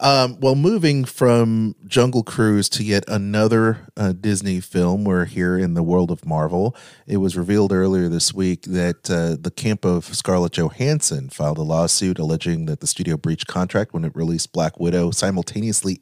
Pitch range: 85-110 Hz